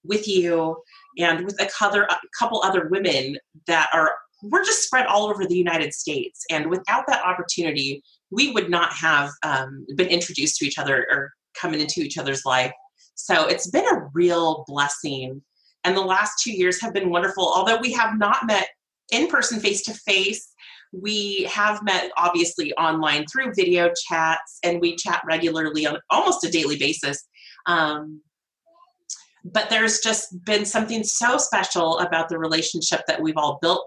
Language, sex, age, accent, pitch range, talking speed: English, female, 30-49, American, 165-210 Hz, 165 wpm